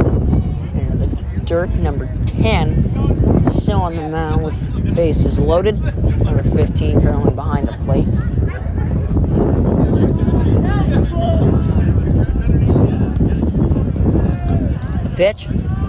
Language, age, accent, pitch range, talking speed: English, 20-39, American, 85-115 Hz, 65 wpm